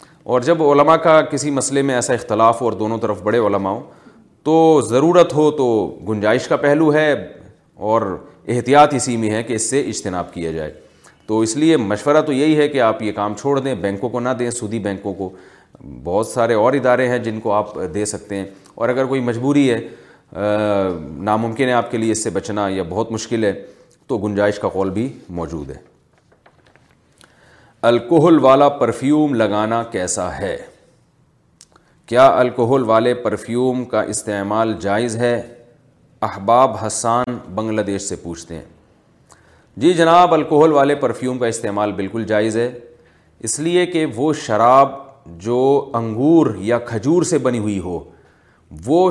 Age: 30-49